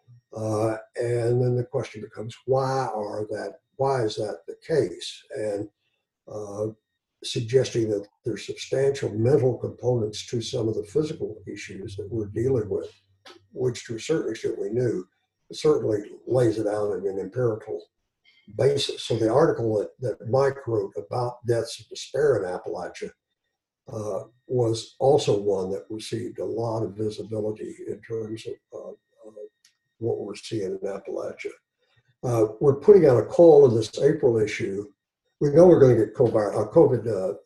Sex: male